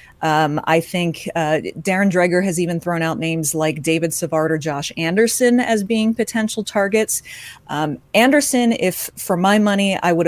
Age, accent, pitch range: 30-49, American, 160-195 Hz